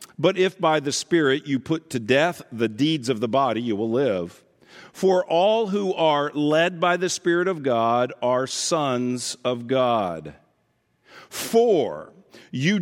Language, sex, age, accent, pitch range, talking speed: English, male, 50-69, American, 130-185 Hz, 155 wpm